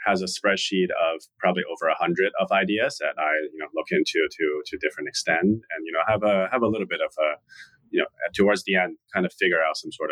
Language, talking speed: English, 255 wpm